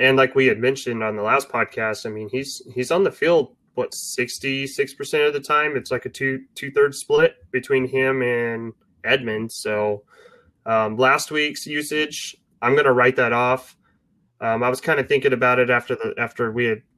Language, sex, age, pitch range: English, male, 20-39, 120-145 Hz